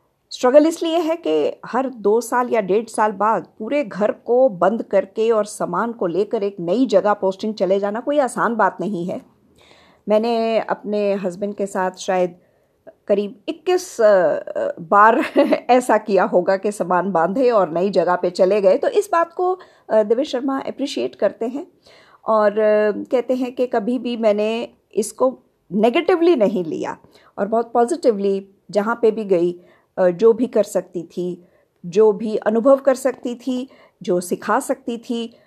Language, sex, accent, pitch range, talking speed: Hindi, female, native, 195-260 Hz, 160 wpm